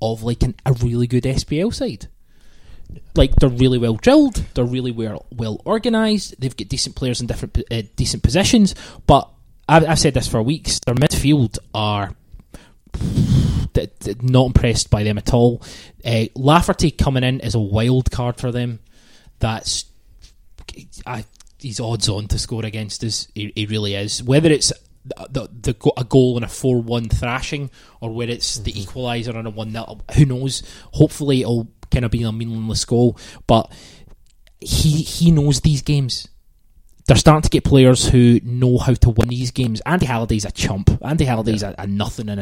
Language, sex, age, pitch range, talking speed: English, male, 20-39, 110-140 Hz, 165 wpm